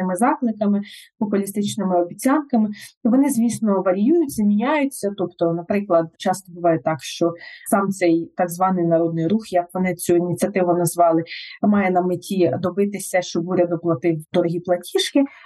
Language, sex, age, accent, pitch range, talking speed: Ukrainian, female, 20-39, native, 185-240 Hz, 130 wpm